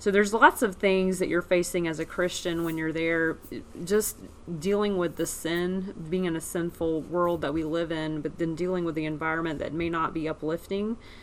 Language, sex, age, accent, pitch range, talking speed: English, female, 30-49, American, 160-185 Hz, 210 wpm